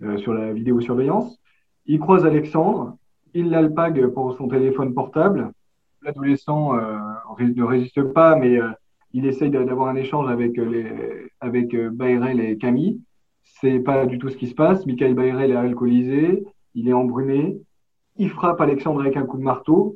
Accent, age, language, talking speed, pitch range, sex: French, 20-39, French, 170 wpm, 125-155 Hz, male